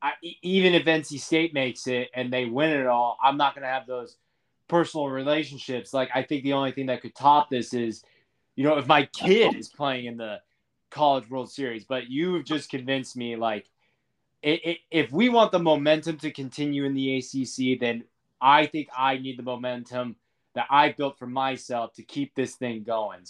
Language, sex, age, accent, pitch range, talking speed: English, male, 20-39, American, 120-145 Hz, 195 wpm